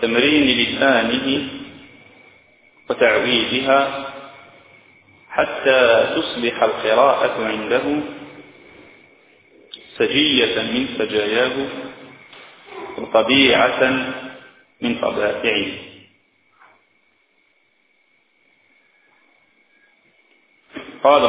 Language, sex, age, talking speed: Malay, male, 40-59, 40 wpm